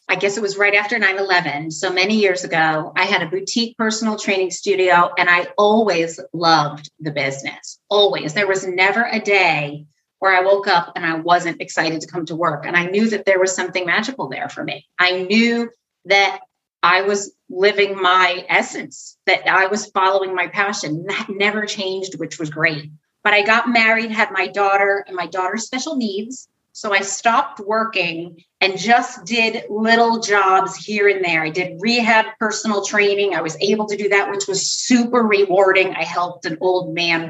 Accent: American